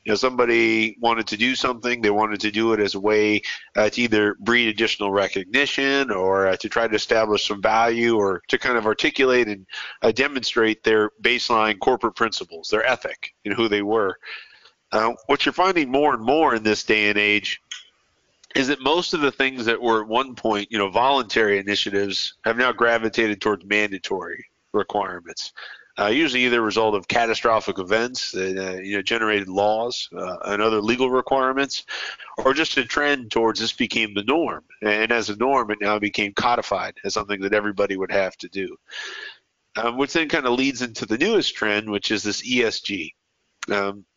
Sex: male